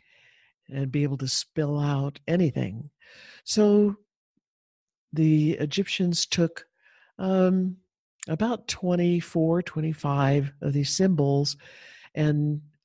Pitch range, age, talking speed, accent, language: 140-175 Hz, 60-79, 90 wpm, American, English